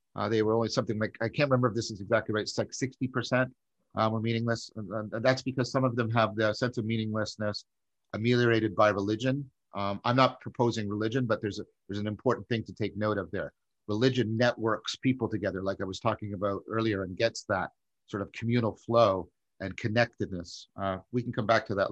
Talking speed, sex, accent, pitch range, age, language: 215 wpm, male, American, 105-130 Hz, 50-69, English